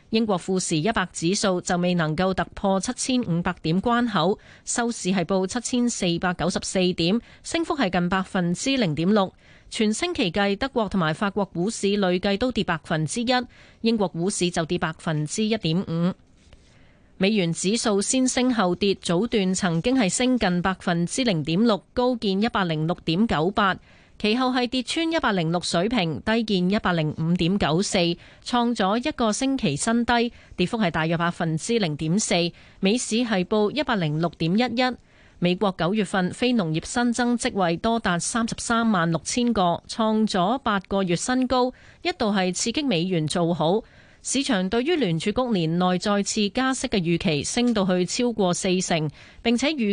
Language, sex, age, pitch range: Chinese, female, 30-49, 175-235 Hz